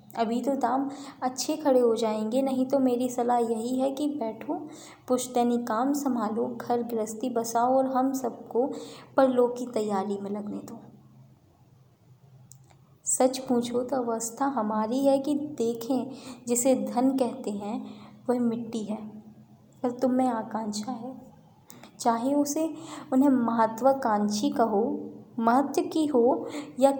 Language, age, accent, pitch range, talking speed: Hindi, 20-39, native, 225-270 Hz, 135 wpm